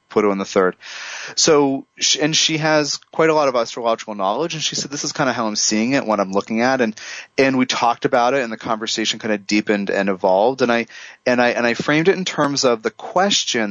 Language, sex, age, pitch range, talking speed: English, male, 30-49, 100-135 Hz, 245 wpm